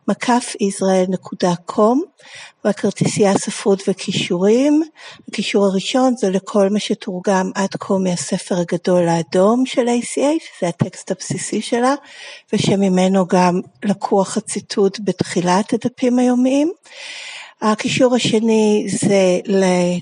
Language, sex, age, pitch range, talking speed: Hebrew, female, 60-79, 190-240 Hz, 105 wpm